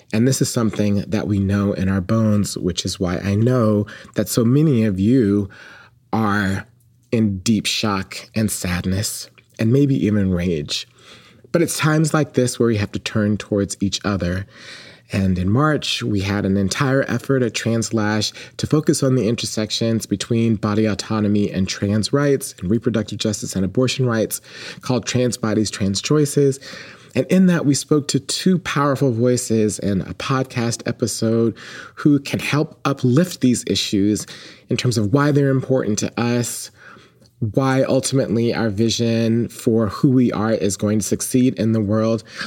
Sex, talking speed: male, 165 wpm